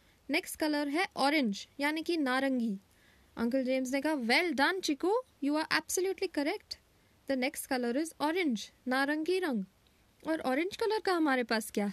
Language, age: Hindi, 20-39